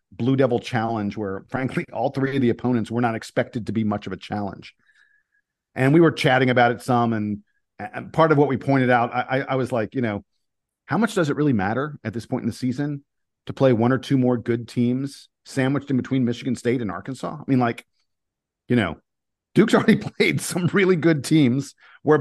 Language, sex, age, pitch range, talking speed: English, male, 40-59, 115-140 Hz, 215 wpm